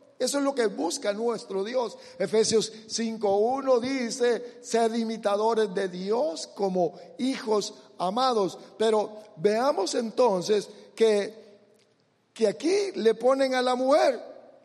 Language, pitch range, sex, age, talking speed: English, 205-265 Hz, male, 50-69, 115 wpm